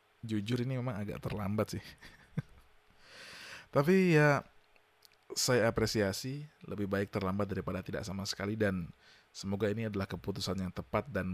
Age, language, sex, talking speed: 20-39, Indonesian, male, 130 wpm